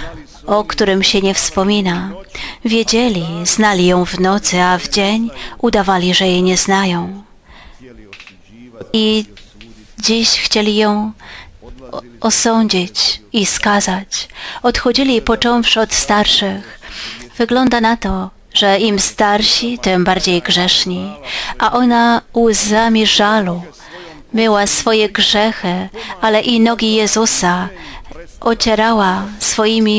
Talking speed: 100 wpm